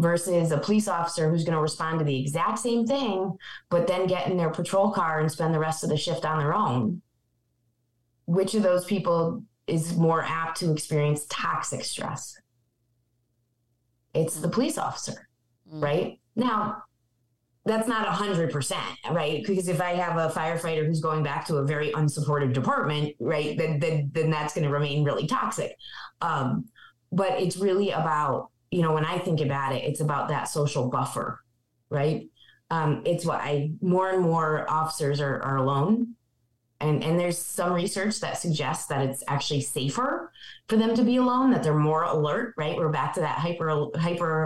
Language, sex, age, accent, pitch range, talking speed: English, female, 20-39, American, 150-180 Hz, 175 wpm